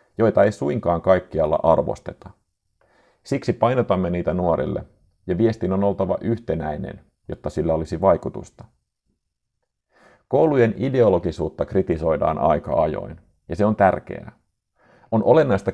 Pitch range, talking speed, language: 90-115 Hz, 110 wpm, Finnish